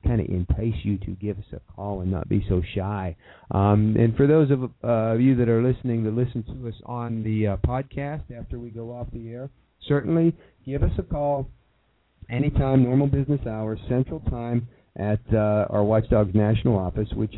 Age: 50-69